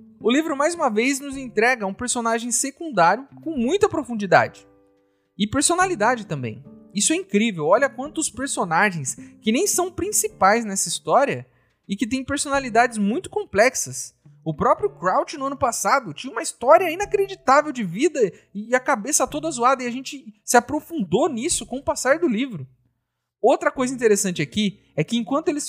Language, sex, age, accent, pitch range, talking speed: Portuguese, male, 30-49, Brazilian, 205-290 Hz, 165 wpm